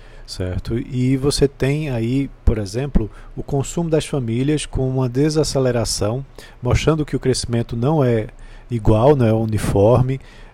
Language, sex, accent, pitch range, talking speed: Portuguese, male, Brazilian, 115-135 Hz, 135 wpm